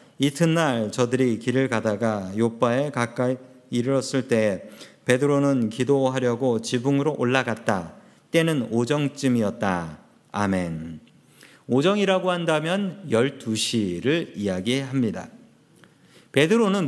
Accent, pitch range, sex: native, 120-175 Hz, male